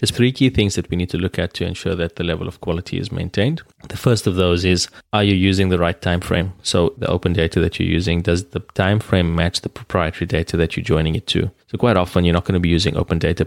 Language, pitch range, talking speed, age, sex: English, 80-100 Hz, 275 wpm, 20-39, male